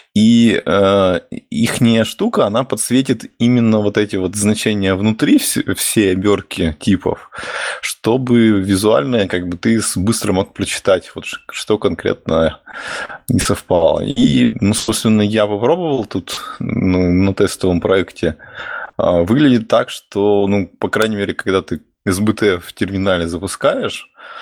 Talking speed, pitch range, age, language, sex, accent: 130 wpm, 95-110 Hz, 20-39, Russian, male, native